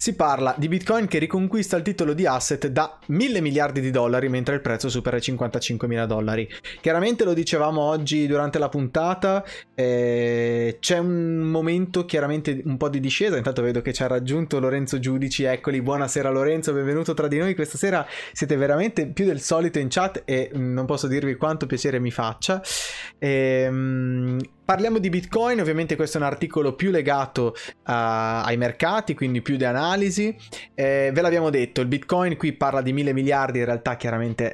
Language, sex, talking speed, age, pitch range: Italian, male, 175 wpm, 20-39, 130-170 Hz